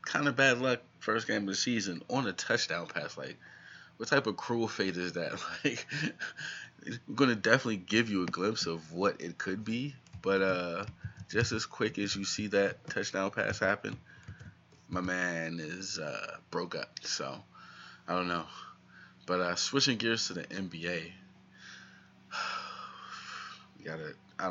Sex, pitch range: male, 85-105 Hz